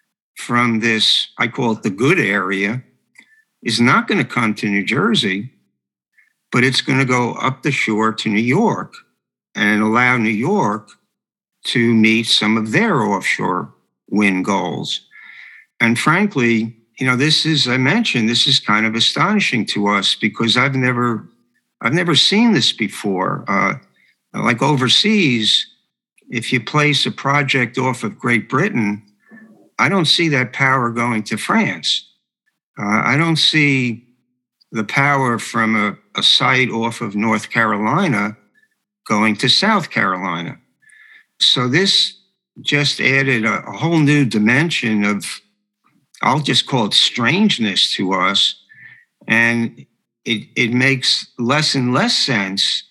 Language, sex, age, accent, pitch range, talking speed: English, male, 60-79, American, 110-145 Hz, 145 wpm